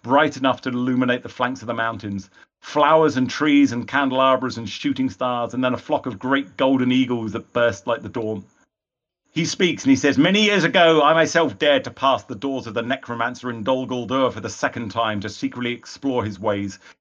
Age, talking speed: 40-59, 210 wpm